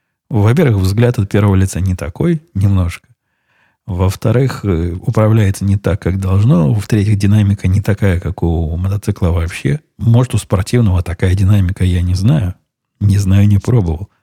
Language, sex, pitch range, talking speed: Russian, male, 90-115 Hz, 150 wpm